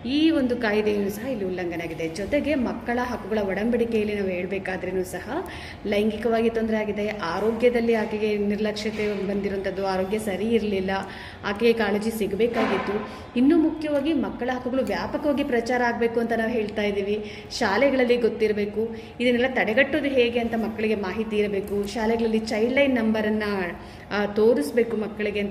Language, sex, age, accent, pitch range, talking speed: English, female, 20-39, Indian, 195-235 Hz, 140 wpm